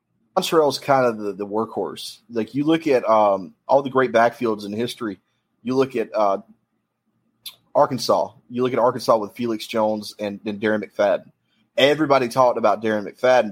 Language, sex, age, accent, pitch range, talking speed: English, male, 30-49, American, 105-130 Hz, 175 wpm